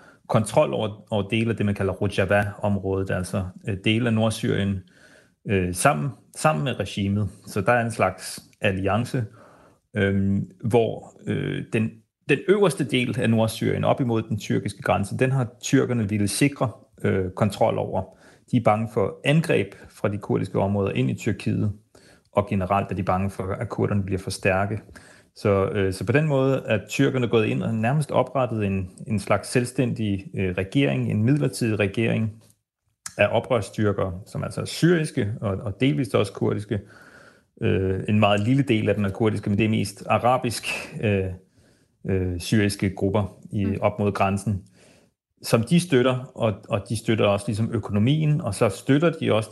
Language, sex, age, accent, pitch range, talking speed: Danish, male, 30-49, native, 100-125 Hz, 165 wpm